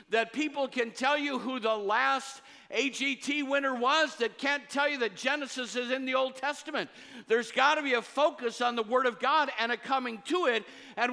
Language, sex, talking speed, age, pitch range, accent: English, male, 210 wpm, 50-69, 195-280 Hz, American